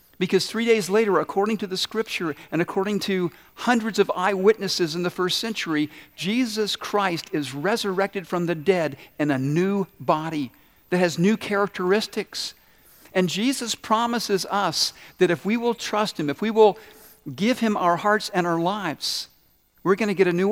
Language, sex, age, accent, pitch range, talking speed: English, male, 50-69, American, 165-210 Hz, 170 wpm